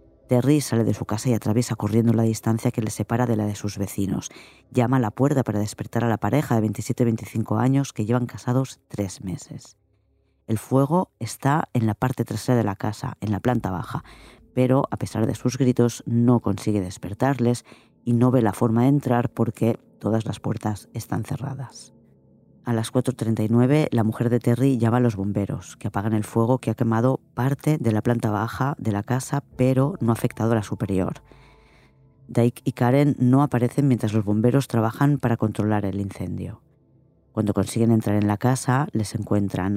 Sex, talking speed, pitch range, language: female, 190 wpm, 105-130 Hz, Spanish